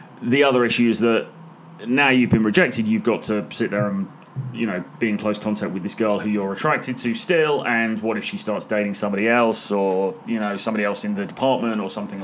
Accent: British